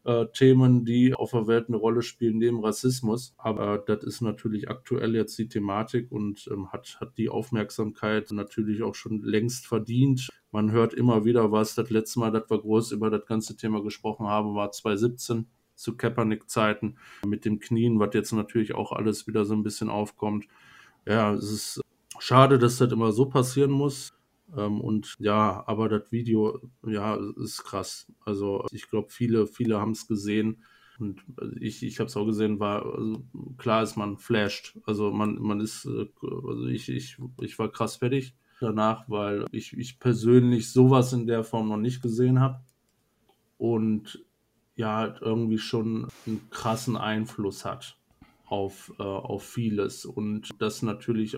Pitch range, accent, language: 105-120 Hz, German, German